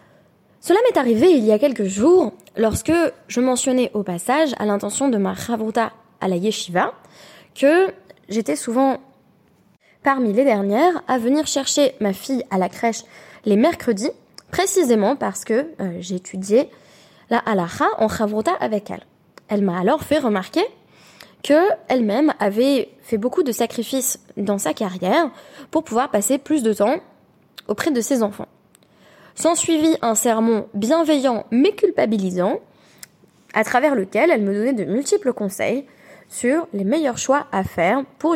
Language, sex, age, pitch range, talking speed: French, female, 20-39, 205-285 Hz, 150 wpm